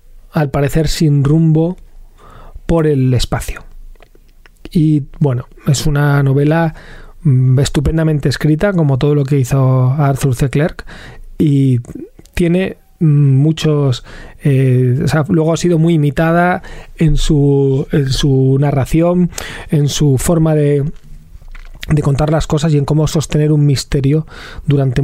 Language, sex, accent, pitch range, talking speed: Spanish, male, Spanish, 140-170 Hz, 125 wpm